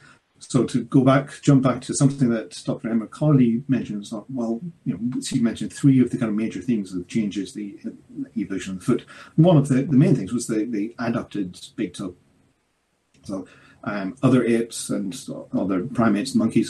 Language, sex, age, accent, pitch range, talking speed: English, male, 40-59, British, 115-140 Hz, 195 wpm